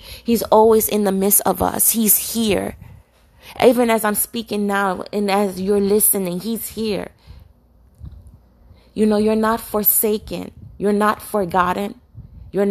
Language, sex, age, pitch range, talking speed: English, female, 30-49, 190-220 Hz, 135 wpm